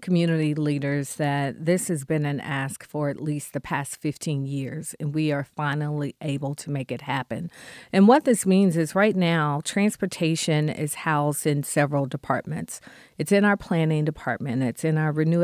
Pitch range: 145-170 Hz